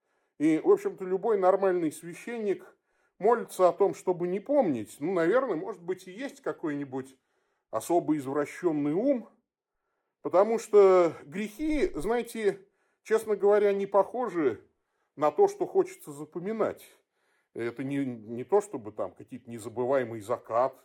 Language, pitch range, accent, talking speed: Russian, 180-300 Hz, native, 125 wpm